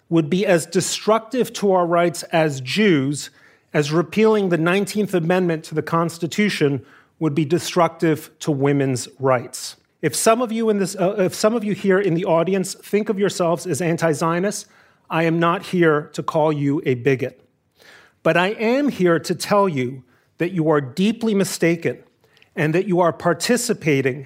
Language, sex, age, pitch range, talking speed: English, male, 40-59, 150-195 Hz, 170 wpm